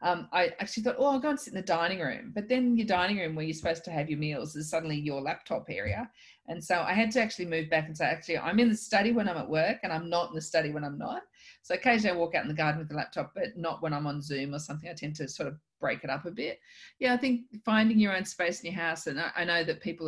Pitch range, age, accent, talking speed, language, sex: 155-200 Hz, 40-59, Australian, 305 wpm, English, female